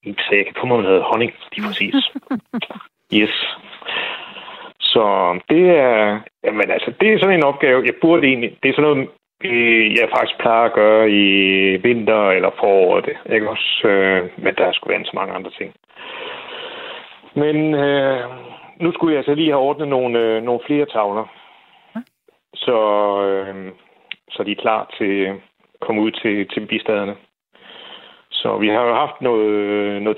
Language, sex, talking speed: Danish, male, 155 wpm